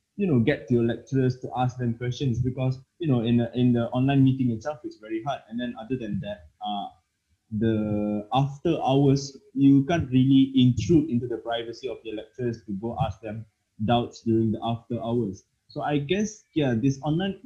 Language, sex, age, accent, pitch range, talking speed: English, male, 20-39, Malaysian, 115-140 Hz, 190 wpm